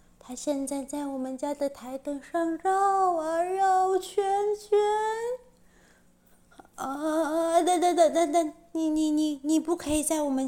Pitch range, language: 240-335 Hz, Chinese